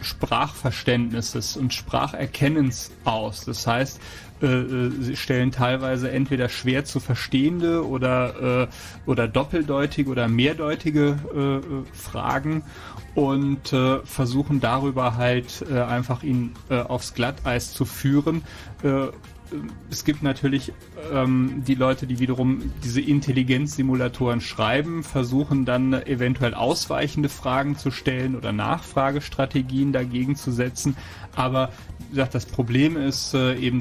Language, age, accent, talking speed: German, 30-49, German, 120 wpm